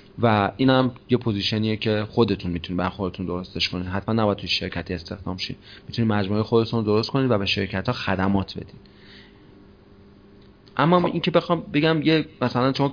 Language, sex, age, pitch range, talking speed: Persian, male, 30-49, 95-110 Hz, 175 wpm